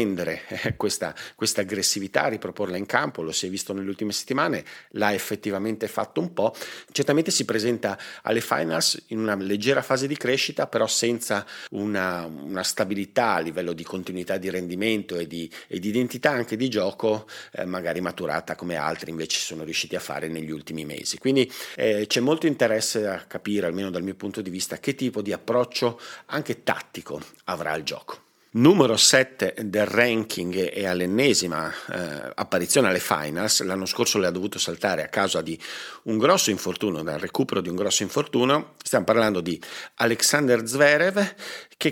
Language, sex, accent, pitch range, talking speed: Italian, male, native, 95-120 Hz, 165 wpm